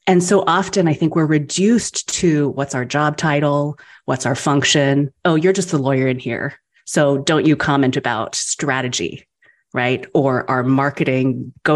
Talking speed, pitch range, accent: 170 wpm, 140-180 Hz, American